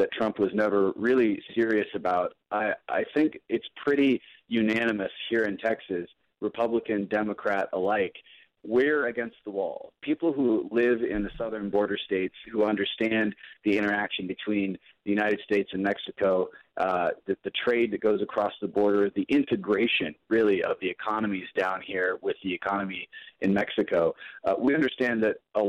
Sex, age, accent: male, 30-49, American